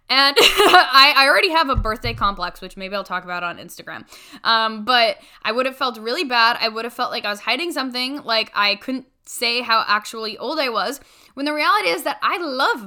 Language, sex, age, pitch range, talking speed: English, female, 10-29, 205-260 Hz, 225 wpm